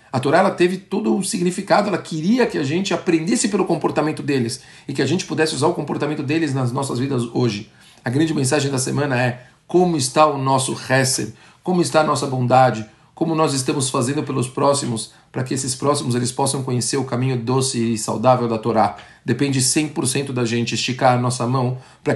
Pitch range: 120-150 Hz